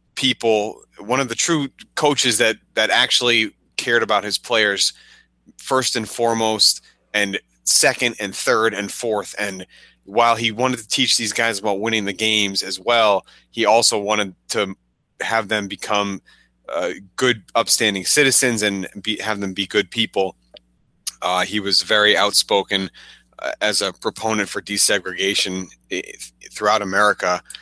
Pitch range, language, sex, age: 95-115 Hz, English, male, 30-49